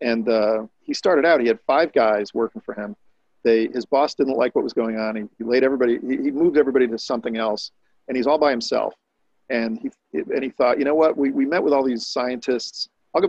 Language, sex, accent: English, male, American